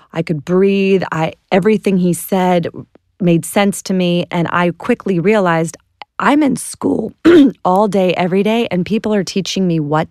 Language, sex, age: English, female, 30-49